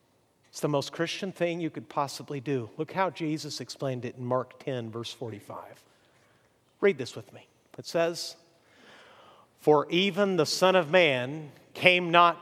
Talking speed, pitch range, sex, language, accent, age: 160 wpm, 135-180 Hz, male, English, American, 50-69